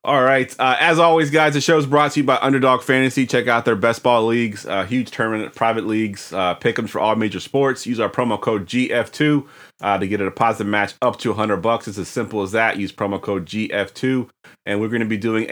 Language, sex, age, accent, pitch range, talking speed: English, male, 30-49, American, 100-120 Hz, 245 wpm